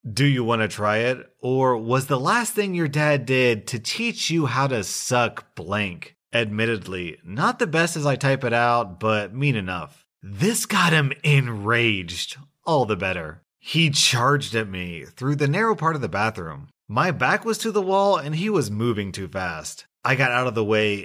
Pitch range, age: 105-150 Hz, 30-49